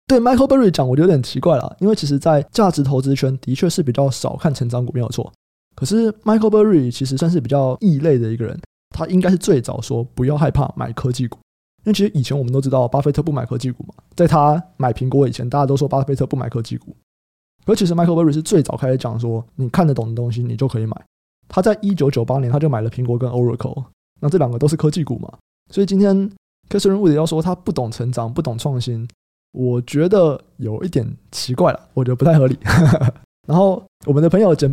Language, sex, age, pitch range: Chinese, male, 20-39, 125-160 Hz